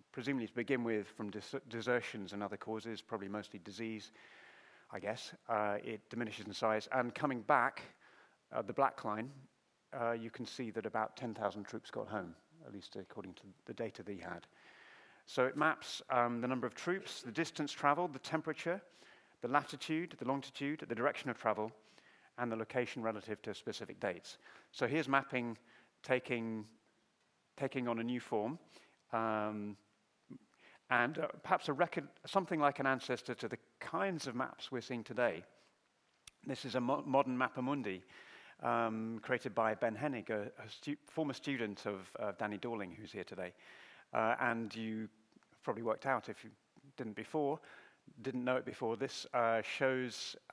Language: English